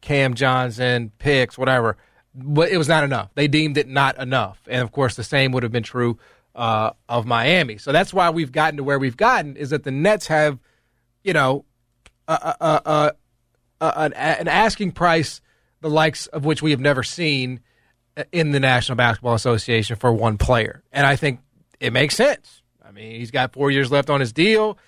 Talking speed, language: 195 wpm, English